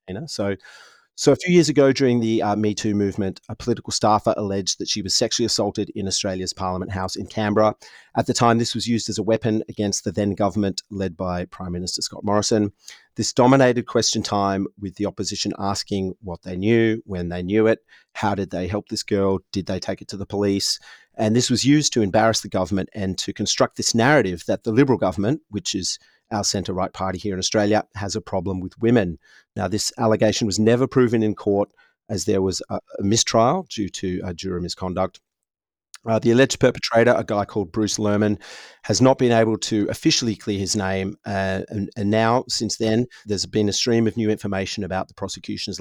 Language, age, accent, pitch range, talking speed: English, 40-59, Australian, 95-110 Hz, 205 wpm